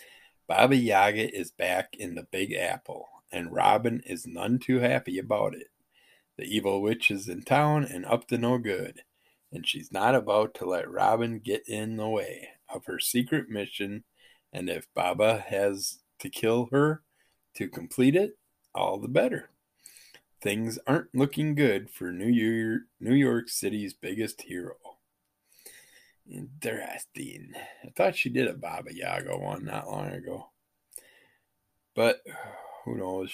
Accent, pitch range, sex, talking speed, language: American, 100-130 Hz, male, 150 wpm, English